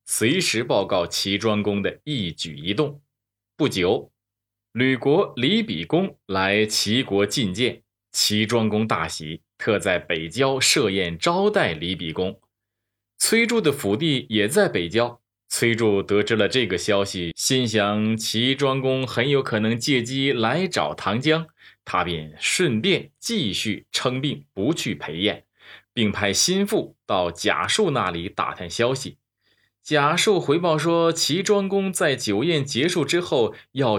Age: 20-39